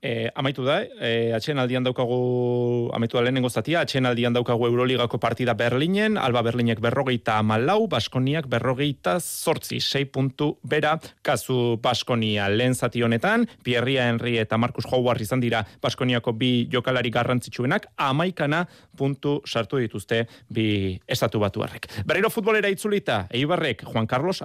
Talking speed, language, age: 135 wpm, Spanish, 30-49